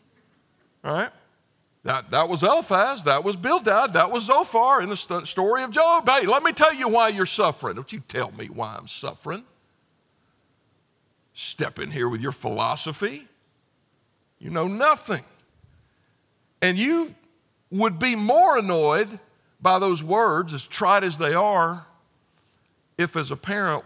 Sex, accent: male, American